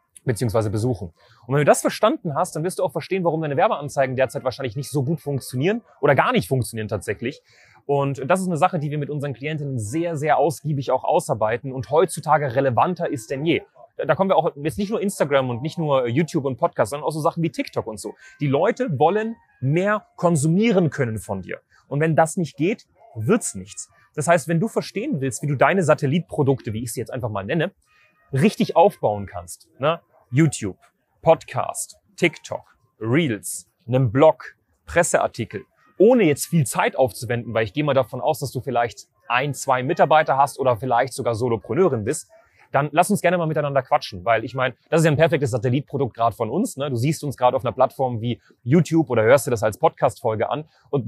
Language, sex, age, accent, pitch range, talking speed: German, male, 30-49, German, 125-165 Hz, 205 wpm